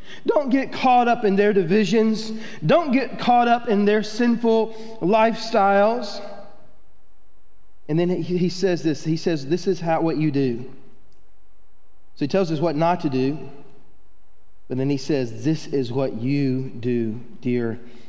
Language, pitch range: English, 130-195 Hz